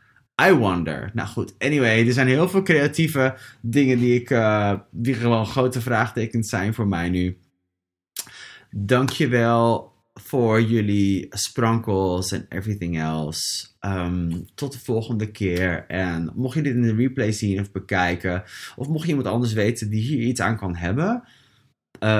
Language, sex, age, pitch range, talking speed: English, male, 20-39, 95-120 Hz, 145 wpm